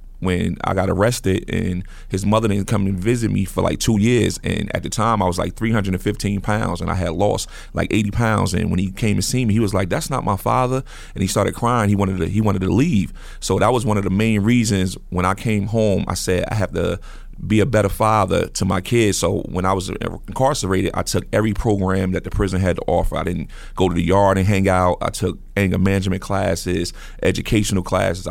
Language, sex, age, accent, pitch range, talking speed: English, male, 30-49, American, 95-110 Hz, 235 wpm